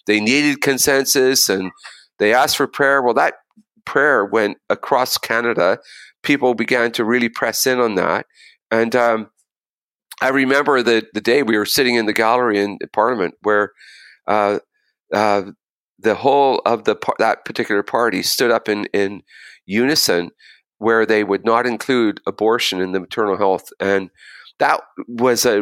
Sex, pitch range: male, 105-130 Hz